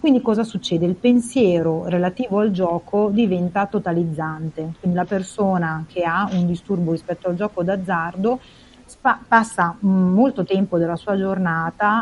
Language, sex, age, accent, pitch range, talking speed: Italian, female, 30-49, native, 170-200 Hz, 135 wpm